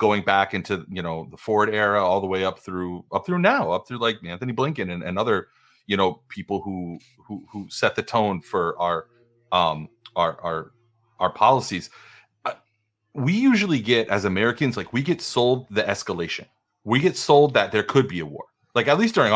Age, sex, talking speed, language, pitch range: 30-49, male, 200 wpm, English, 95-135 Hz